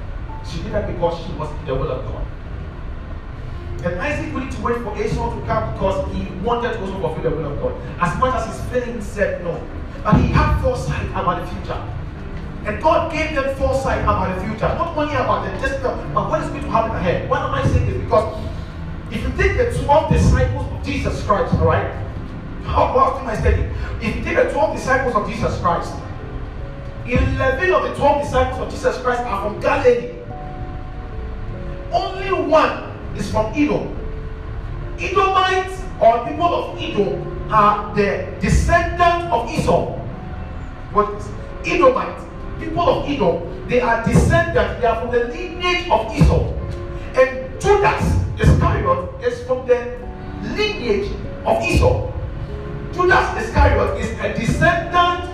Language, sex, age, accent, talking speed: English, male, 30-49, Nigerian, 165 wpm